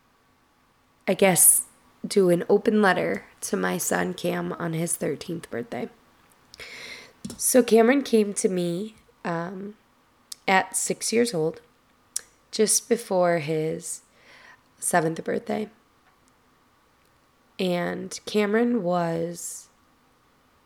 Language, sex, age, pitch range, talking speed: English, female, 20-39, 165-210 Hz, 95 wpm